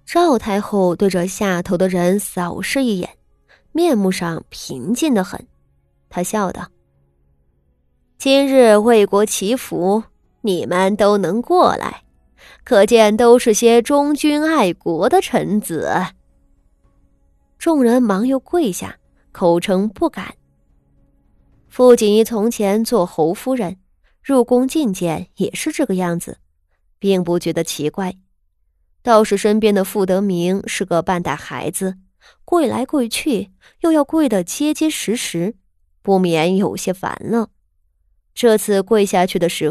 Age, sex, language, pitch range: 20-39, female, Chinese, 160-230 Hz